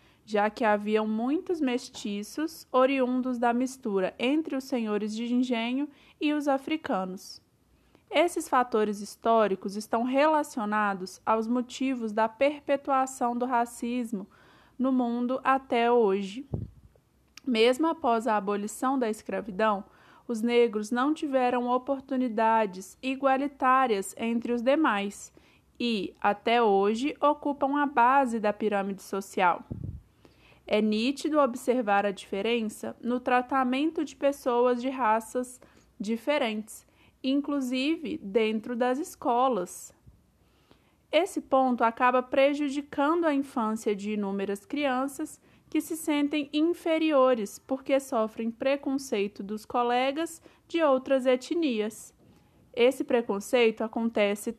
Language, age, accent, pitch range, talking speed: Portuguese, 20-39, Brazilian, 220-280 Hz, 105 wpm